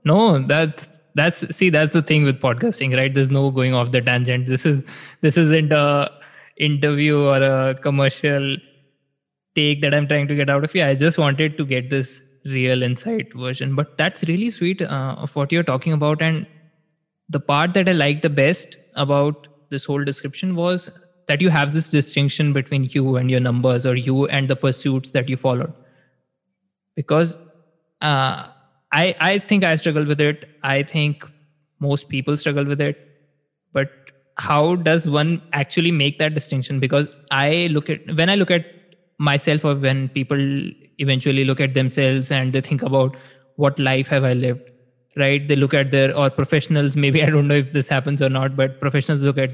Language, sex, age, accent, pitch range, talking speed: English, male, 20-39, Indian, 135-155 Hz, 185 wpm